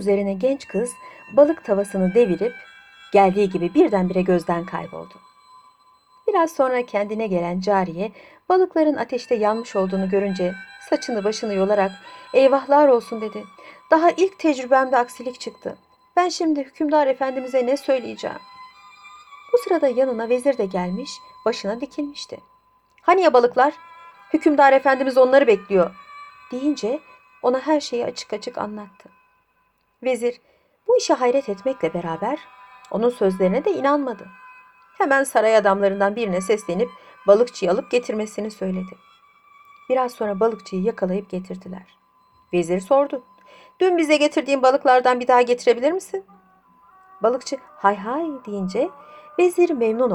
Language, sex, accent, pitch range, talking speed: Turkish, female, native, 200-300 Hz, 120 wpm